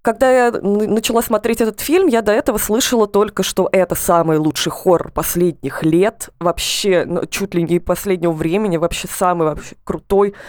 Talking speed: 160 wpm